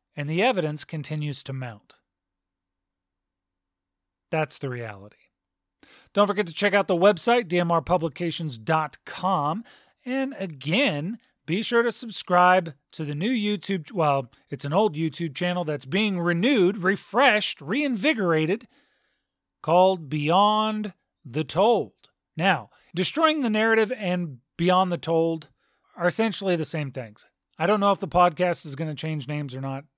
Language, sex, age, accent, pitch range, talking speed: English, male, 40-59, American, 145-200 Hz, 135 wpm